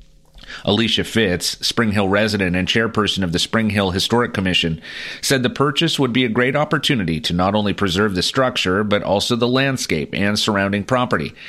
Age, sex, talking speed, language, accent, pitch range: 40-59, male, 180 wpm, English, American, 95-125 Hz